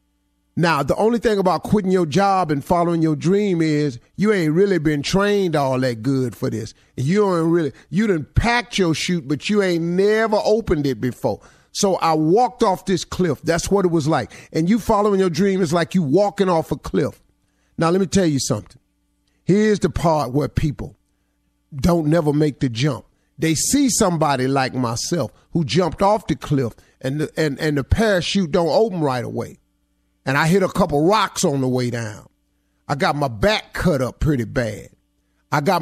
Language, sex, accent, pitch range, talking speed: English, male, American, 145-205 Hz, 195 wpm